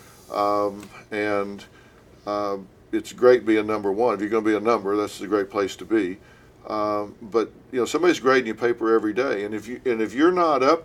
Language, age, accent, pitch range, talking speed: English, 50-69, American, 105-125 Hz, 215 wpm